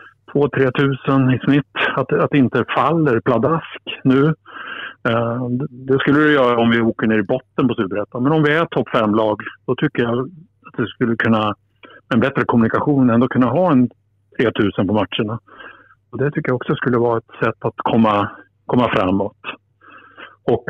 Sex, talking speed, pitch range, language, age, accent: male, 175 wpm, 115-140 Hz, Swedish, 50-69, Norwegian